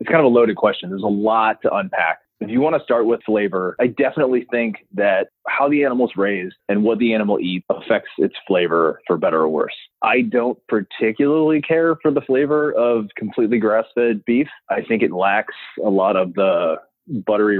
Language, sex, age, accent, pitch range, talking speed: English, male, 20-39, American, 100-125 Hz, 200 wpm